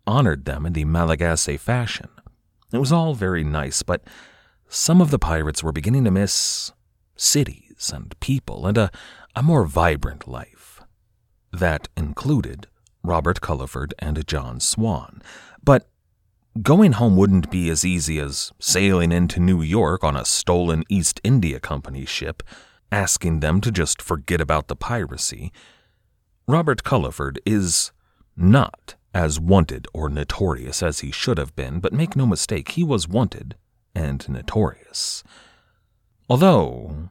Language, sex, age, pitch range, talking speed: English, male, 40-59, 75-105 Hz, 140 wpm